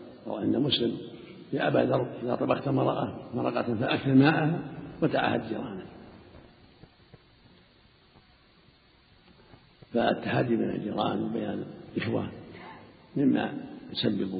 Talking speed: 80 wpm